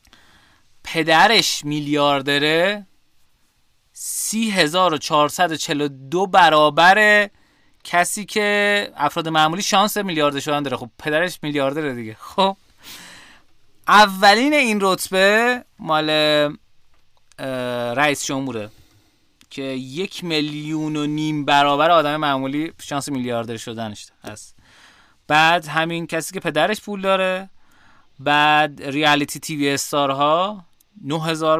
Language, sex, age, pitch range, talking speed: Persian, male, 30-49, 135-180 Hz, 100 wpm